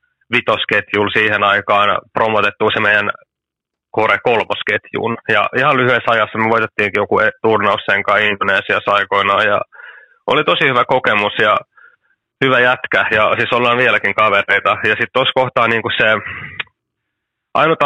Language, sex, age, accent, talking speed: Finnish, male, 30-49, native, 135 wpm